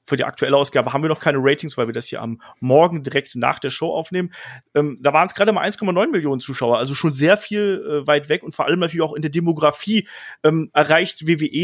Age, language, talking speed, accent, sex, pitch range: 30-49, German, 240 wpm, German, male, 140-180 Hz